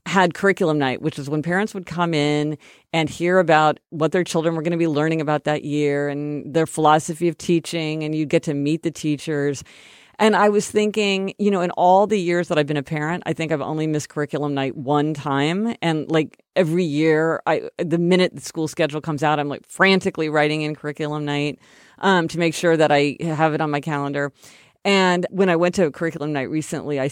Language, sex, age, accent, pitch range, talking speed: English, female, 50-69, American, 145-180 Hz, 225 wpm